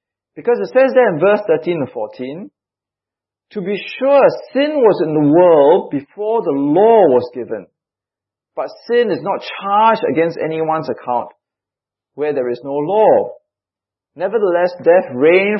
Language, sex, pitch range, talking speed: English, male, 155-255 Hz, 145 wpm